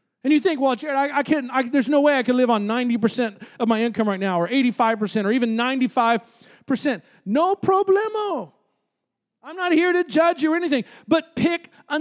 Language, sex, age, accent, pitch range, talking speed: English, male, 40-59, American, 270-335 Hz, 200 wpm